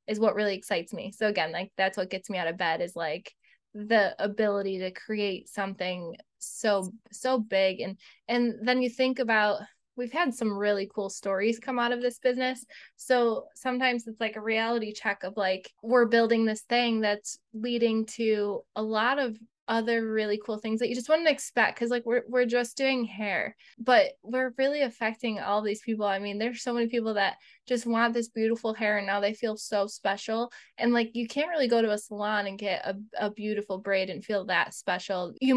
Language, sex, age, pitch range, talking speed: English, female, 10-29, 205-240 Hz, 205 wpm